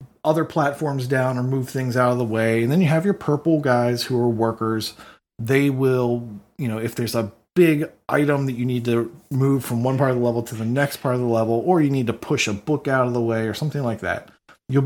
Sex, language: male, English